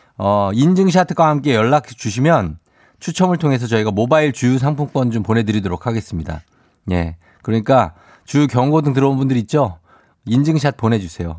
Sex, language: male, Korean